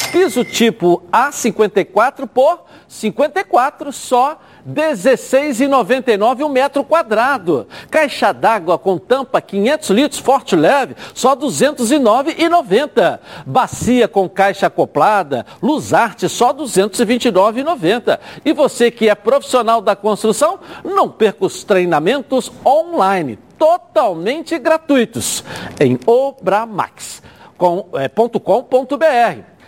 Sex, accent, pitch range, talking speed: male, Brazilian, 200-290 Hz, 95 wpm